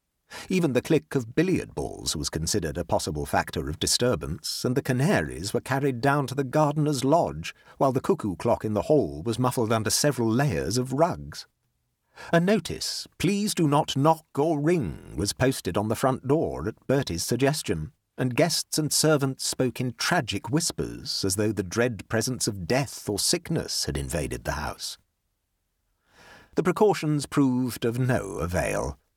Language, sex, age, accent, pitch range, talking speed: English, male, 50-69, British, 90-140 Hz, 165 wpm